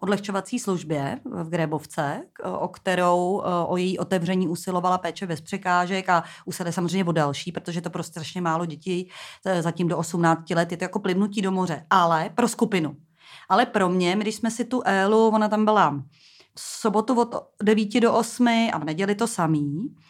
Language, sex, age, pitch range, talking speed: Czech, female, 30-49, 180-220 Hz, 180 wpm